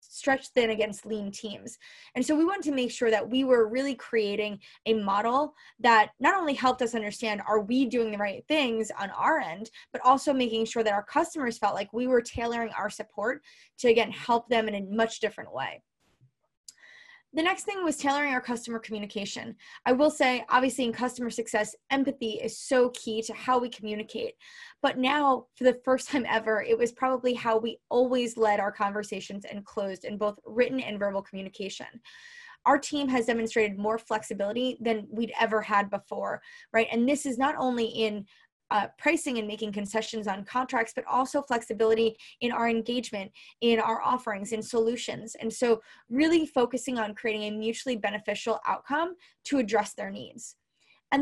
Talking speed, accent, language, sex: 180 wpm, American, English, female